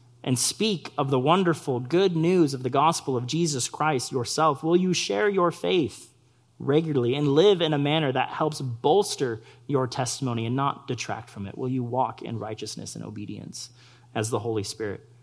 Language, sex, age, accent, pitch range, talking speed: English, male, 30-49, American, 120-140 Hz, 180 wpm